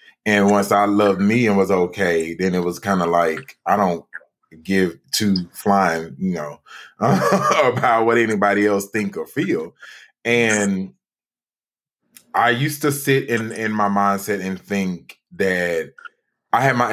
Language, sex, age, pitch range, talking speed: English, male, 20-39, 85-105 Hz, 150 wpm